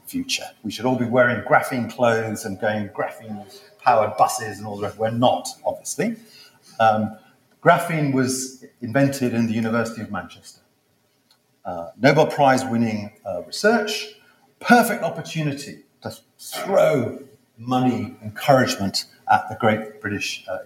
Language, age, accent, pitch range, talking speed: English, 40-59, British, 110-150 Hz, 130 wpm